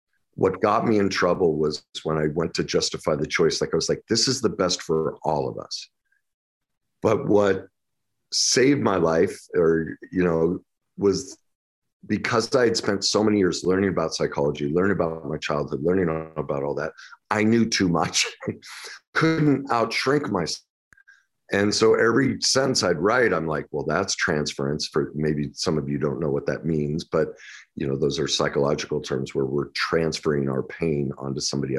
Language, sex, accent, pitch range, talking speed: English, male, American, 75-100 Hz, 180 wpm